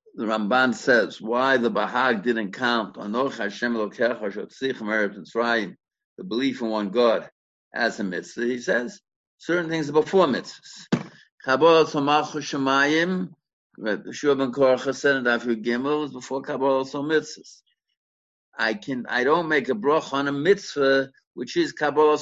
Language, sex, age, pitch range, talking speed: English, male, 60-79, 120-160 Hz, 150 wpm